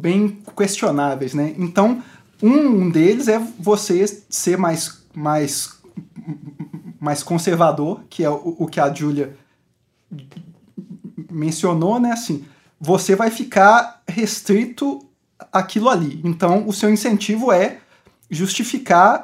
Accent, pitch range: Brazilian, 175-230 Hz